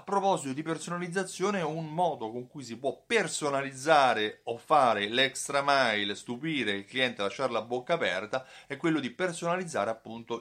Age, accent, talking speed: 30-49, native, 155 wpm